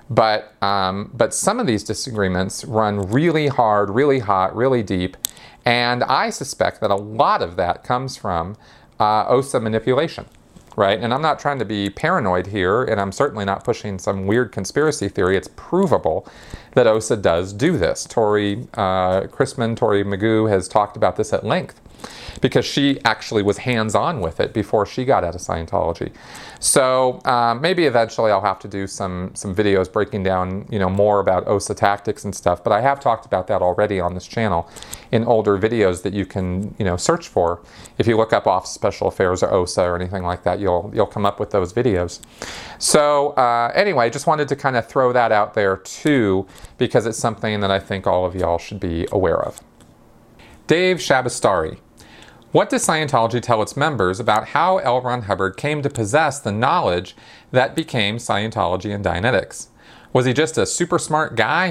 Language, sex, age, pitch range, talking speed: English, male, 40-59, 95-125 Hz, 190 wpm